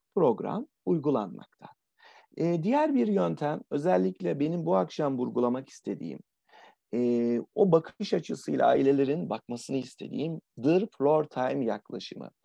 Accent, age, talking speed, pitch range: native, 40-59, 110 wpm, 125-200 Hz